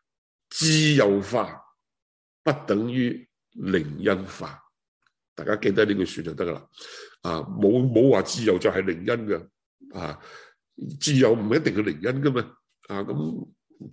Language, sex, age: Chinese, male, 60-79